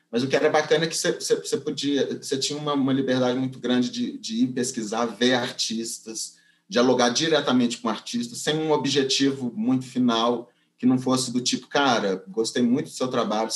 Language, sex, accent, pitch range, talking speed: Portuguese, male, Brazilian, 115-155 Hz, 190 wpm